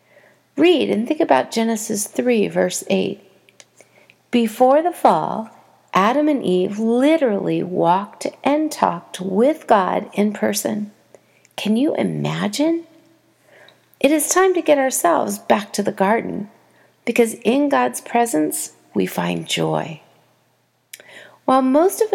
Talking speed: 120 wpm